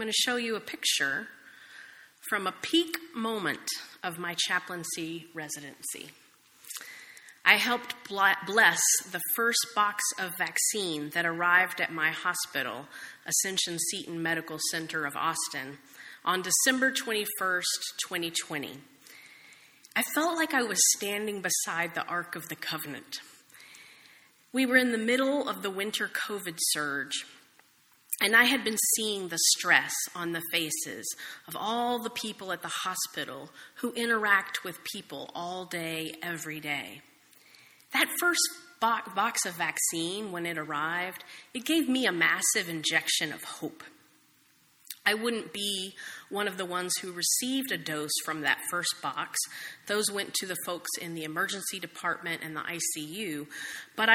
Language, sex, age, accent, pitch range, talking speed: English, female, 30-49, American, 165-225 Hz, 145 wpm